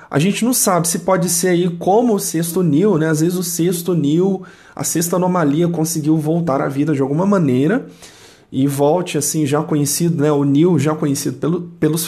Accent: Brazilian